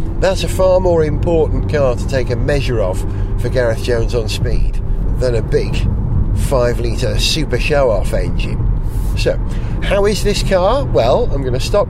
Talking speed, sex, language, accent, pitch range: 160 wpm, male, English, British, 115-140 Hz